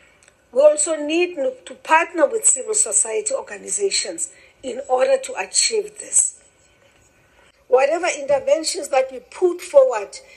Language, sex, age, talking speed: English, female, 50-69, 115 wpm